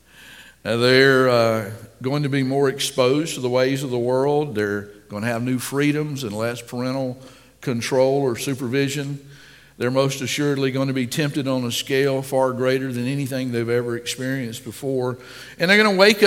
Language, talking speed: English, 175 wpm